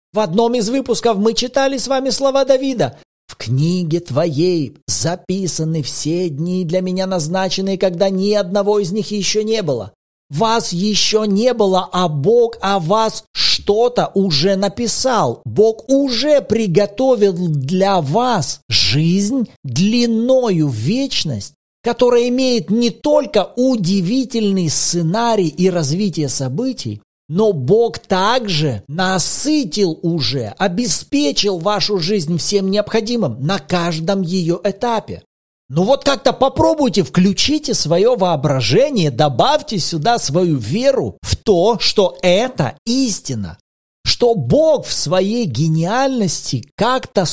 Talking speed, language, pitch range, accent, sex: 115 wpm, Russian, 165-230 Hz, native, male